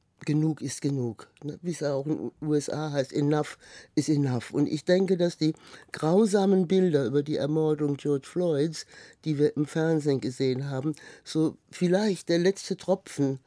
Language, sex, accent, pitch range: German, male, German, 145-175 Hz